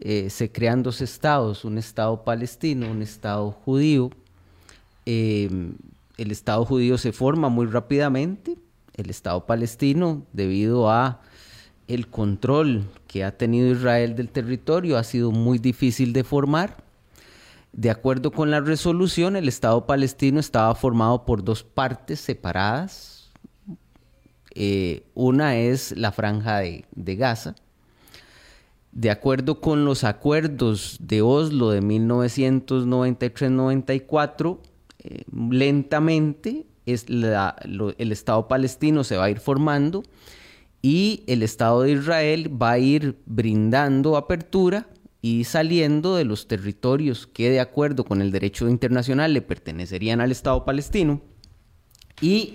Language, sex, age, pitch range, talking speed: Spanish, male, 30-49, 110-145 Hz, 120 wpm